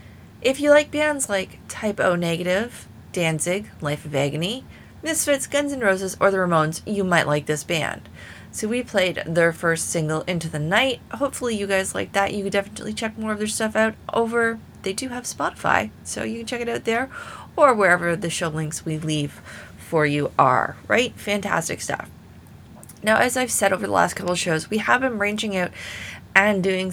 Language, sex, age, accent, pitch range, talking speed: English, female, 30-49, American, 155-205 Hz, 200 wpm